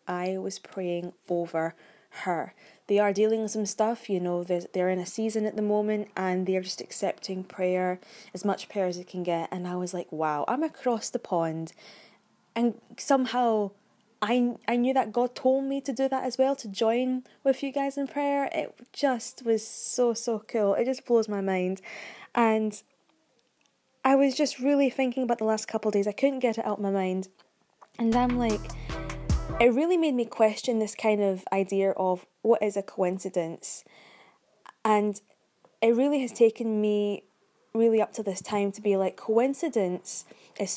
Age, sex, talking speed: 10-29, female, 185 wpm